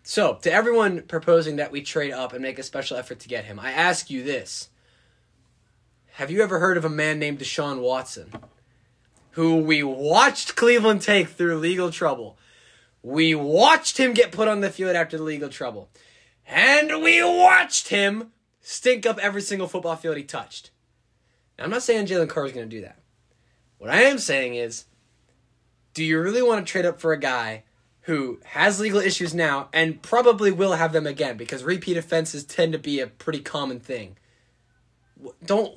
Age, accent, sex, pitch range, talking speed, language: 20-39, American, male, 130-200 Hz, 185 wpm, English